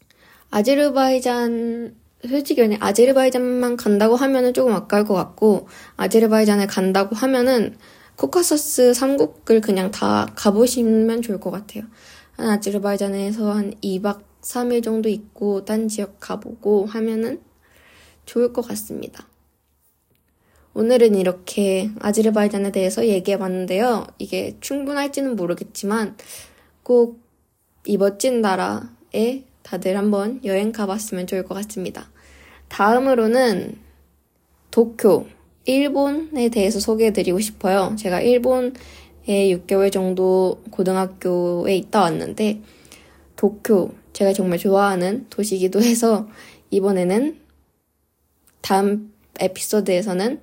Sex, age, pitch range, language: female, 20-39, 190-235 Hz, Korean